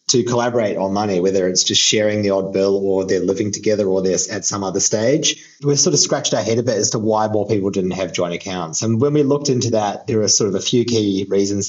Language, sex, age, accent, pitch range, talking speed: English, male, 30-49, Australian, 95-110 Hz, 265 wpm